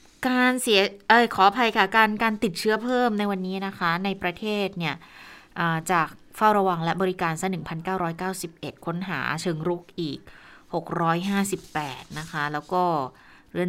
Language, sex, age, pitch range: Thai, female, 20-39, 165-205 Hz